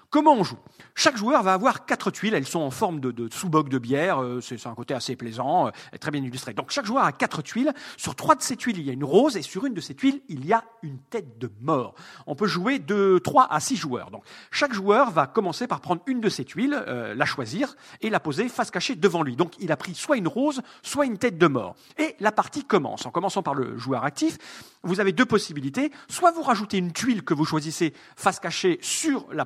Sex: male